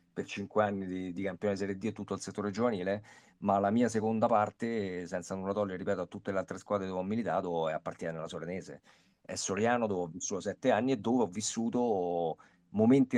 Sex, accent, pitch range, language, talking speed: male, native, 95-115 Hz, Italian, 215 wpm